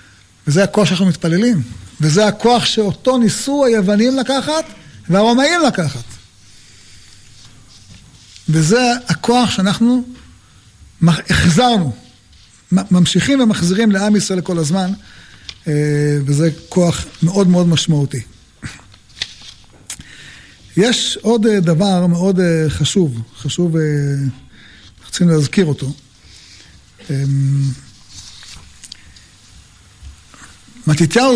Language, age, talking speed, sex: Hebrew, 50-69, 70 wpm, male